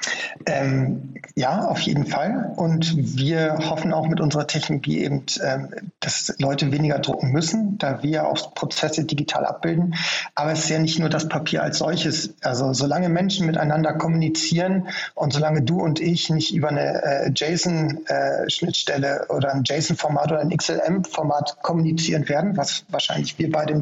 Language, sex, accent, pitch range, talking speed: German, male, German, 150-170 Hz, 160 wpm